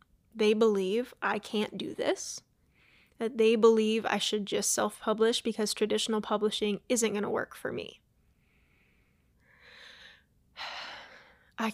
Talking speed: 120 wpm